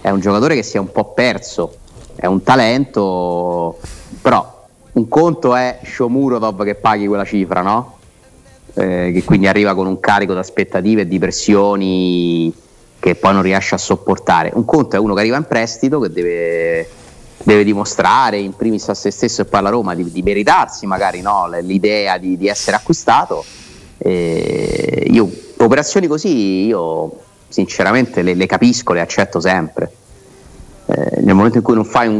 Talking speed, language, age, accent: 170 wpm, Italian, 30-49, native